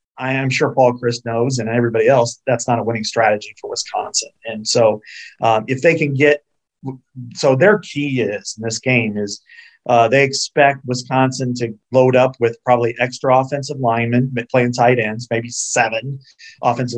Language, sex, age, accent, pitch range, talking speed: English, male, 40-59, American, 115-140 Hz, 175 wpm